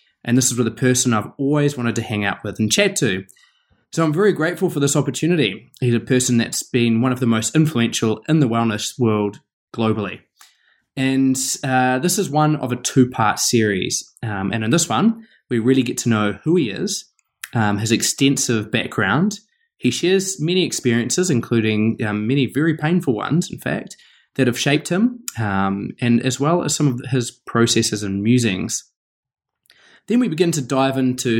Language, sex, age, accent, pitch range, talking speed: English, male, 20-39, Australian, 110-145 Hz, 185 wpm